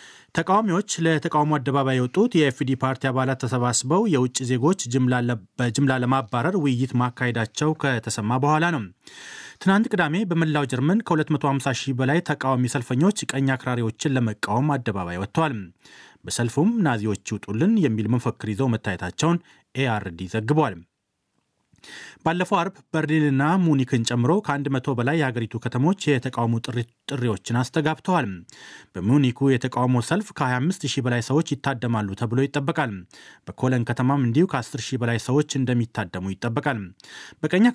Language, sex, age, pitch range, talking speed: Amharic, male, 30-49, 120-155 Hz, 110 wpm